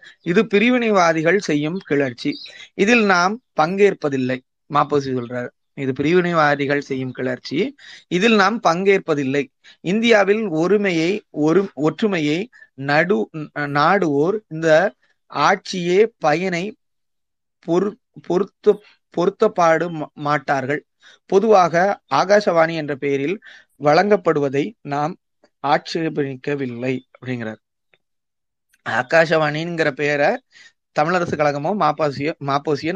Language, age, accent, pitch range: Tamil, 30-49, native, 145-190 Hz